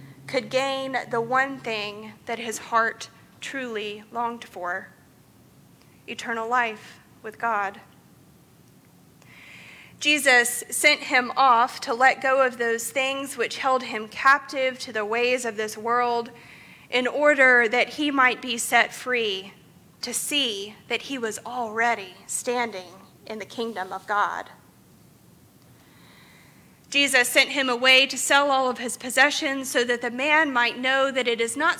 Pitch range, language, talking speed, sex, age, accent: 220-260 Hz, English, 140 wpm, female, 30-49, American